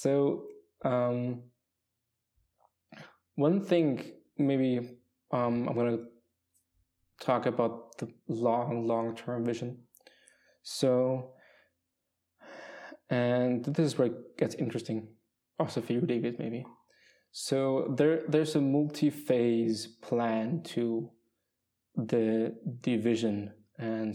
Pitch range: 110-120 Hz